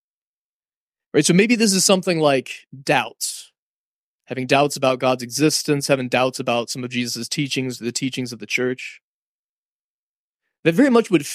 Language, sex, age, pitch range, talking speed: English, male, 20-39, 130-175 Hz, 155 wpm